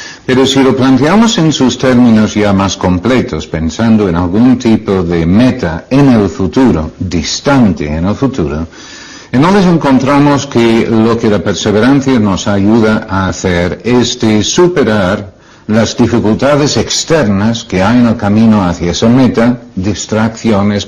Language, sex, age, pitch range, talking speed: Spanish, male, 60-79, 90-125 Hz, 145 wpm